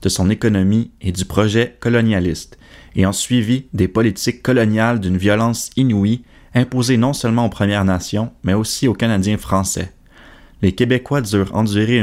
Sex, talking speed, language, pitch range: male, 155 wpm, English, 95-115 Hz